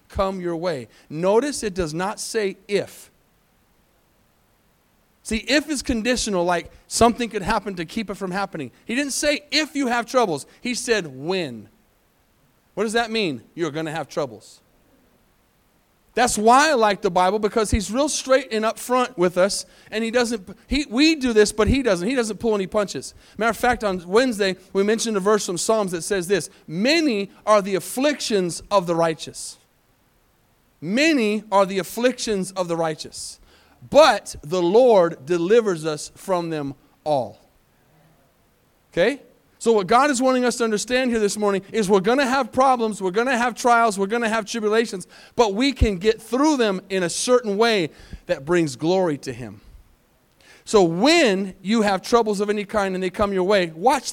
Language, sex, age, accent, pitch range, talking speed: English, male, 30-49, American, 185-235 Hz, 180 wpm